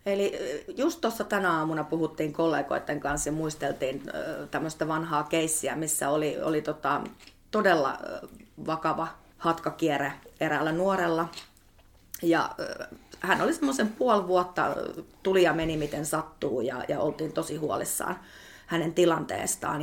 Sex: female